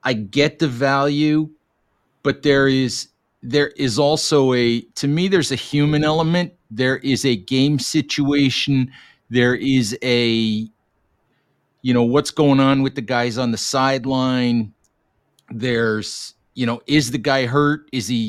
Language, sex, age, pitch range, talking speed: English, male, 40-59, 120-145 Hz, 150 wpm